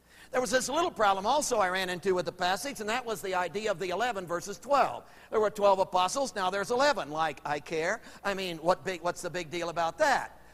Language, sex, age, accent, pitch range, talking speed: English, male, 50-69, American, 185-250 Hz, 240 wpm